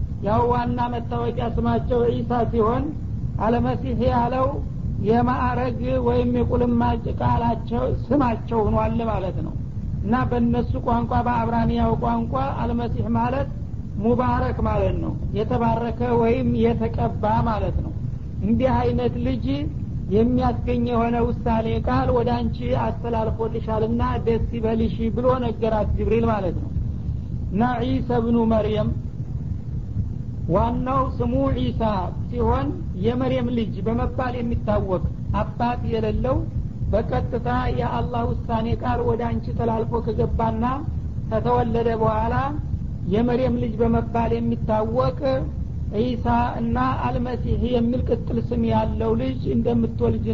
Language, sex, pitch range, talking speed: Amharic, male, 115-125 Hz, 100 wpm